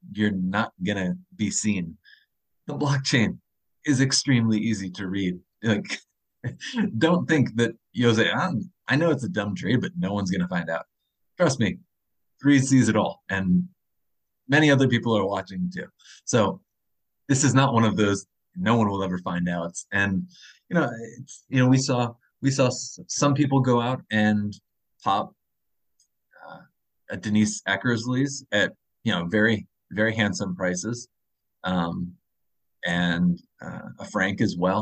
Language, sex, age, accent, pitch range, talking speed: English, male, 30-49, American, 100-135 Hz, 155 wpm